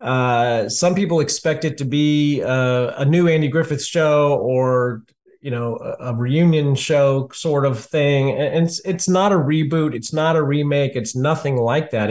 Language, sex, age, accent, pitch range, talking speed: English, male, 40-59, American, 120-155 Hz, 180 wpm